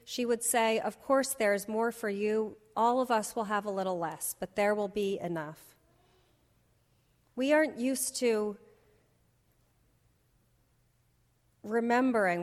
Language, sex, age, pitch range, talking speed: English, female, 30-49, 190-235 Hz, 130 wpm